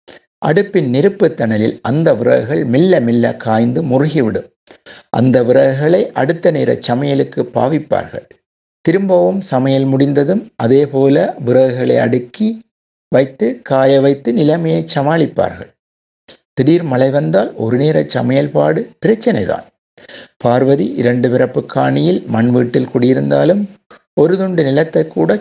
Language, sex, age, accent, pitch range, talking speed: Tamil, male, 60-79, native, 125-170 Hz, 105 wpm